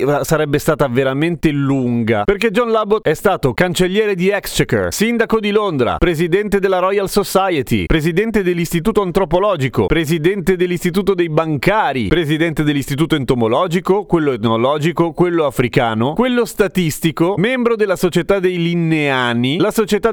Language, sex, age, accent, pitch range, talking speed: Italian, male, 30-49, native, 135-190 Hz, 125 wpm